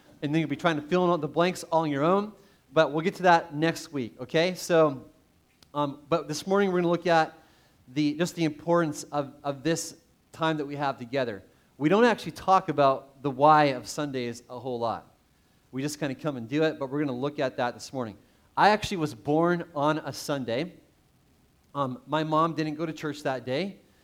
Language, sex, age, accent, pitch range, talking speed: English, male, 30-49, American, 145-170 Hz, 225 wpm